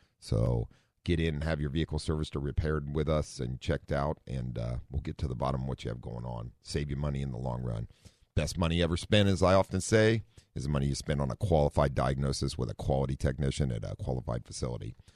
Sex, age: male, 40-59